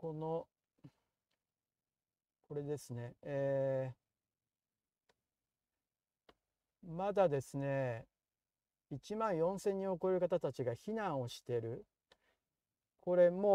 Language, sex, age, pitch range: Japanese, male, 50-69, 125-175 Hz